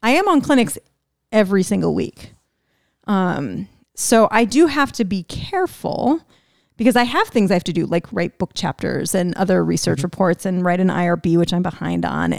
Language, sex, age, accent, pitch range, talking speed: English, female, 30-49, American, 185-230 Hz, 190 wpm